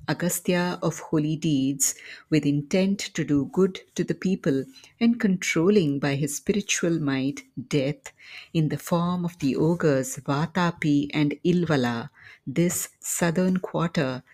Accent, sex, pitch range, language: Indian, female, 140-175 Hz, English